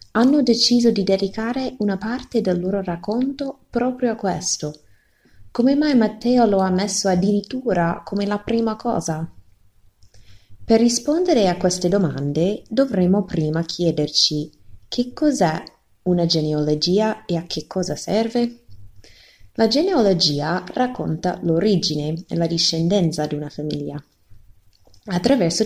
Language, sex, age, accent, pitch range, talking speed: Italian, female, 20-39, native, 150-215 Hz, 120 wpm